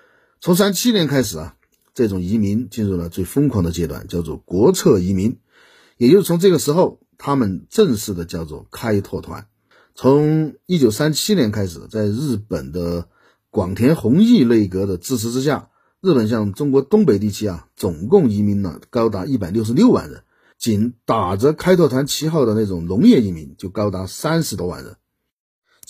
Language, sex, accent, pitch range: Chinese, male, native, 95-150 Hz